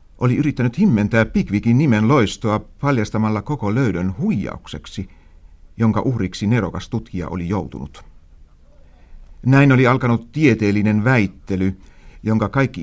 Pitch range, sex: 80-120 Hz, male